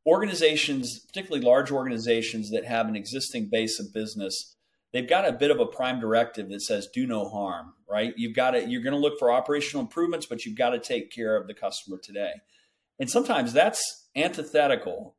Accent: American